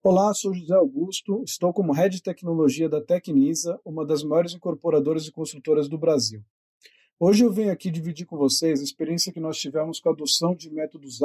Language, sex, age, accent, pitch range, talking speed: Portuguese, male, 40-59, Brazilian, 155-190 Hz, 190 wpm